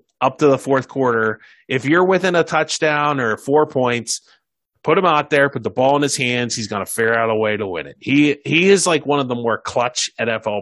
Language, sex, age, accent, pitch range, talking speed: English, male, 30-49, American, 115-155 Hz, 245 wpm